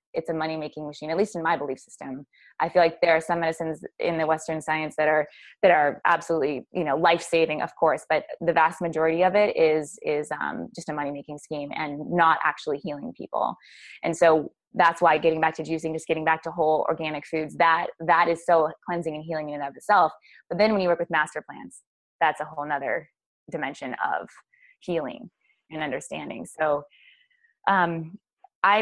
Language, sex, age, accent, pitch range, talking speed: English, female, 20-39, American, 155-180 Hz, 200 wpm